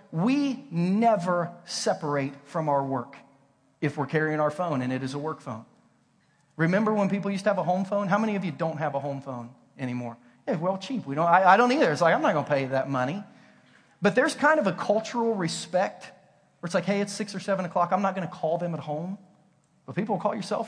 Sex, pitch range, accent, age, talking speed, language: male, 160-215 Hz, American, 30-49, 240 wpm, English